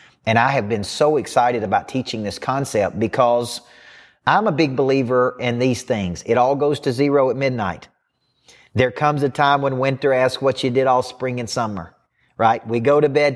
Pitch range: 125-145 Hz